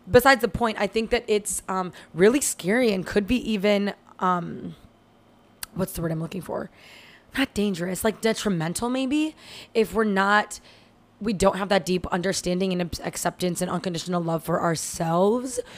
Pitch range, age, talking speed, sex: 175-210 Hz, 20-39, 160 wpm, female